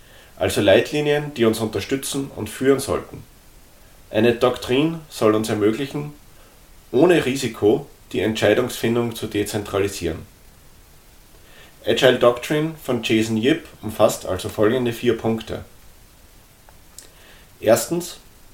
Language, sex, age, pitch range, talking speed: German, male, 30-49, 105-130 Hz, 95 wpm